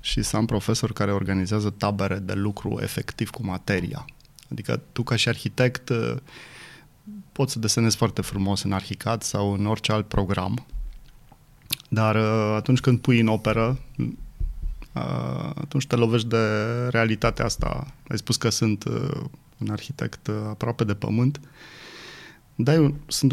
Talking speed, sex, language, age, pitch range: 135 wpm, male, Romanian, 20-39, 105-135 Hz